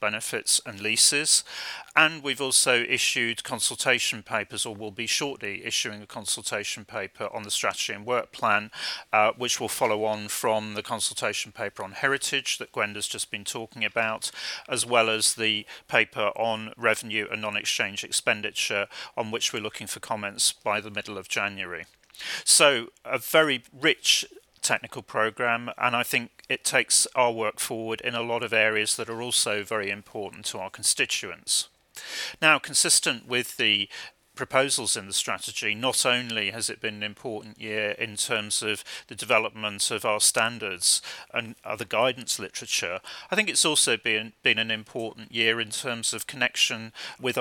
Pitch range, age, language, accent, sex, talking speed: 105-120 Hz, 40-59, English, British, male, 165 wpm